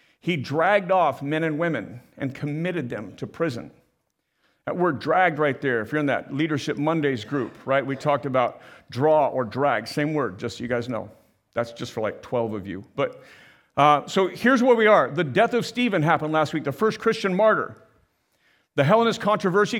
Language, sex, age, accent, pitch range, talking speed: English, male, 50-69, American, 155-210 Hz, 195 wpm